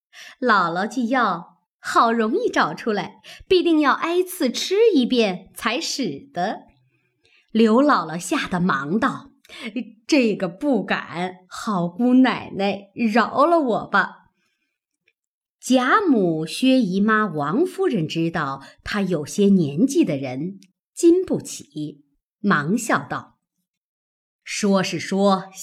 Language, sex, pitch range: Chinese, male, 190-270 Hz